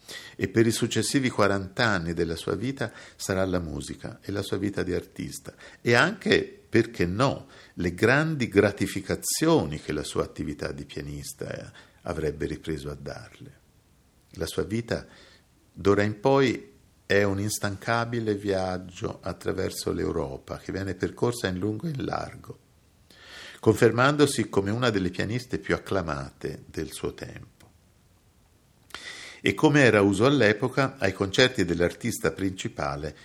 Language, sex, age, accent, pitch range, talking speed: Italian, male, 50-69, native, 85-110 Hz, 135 wpm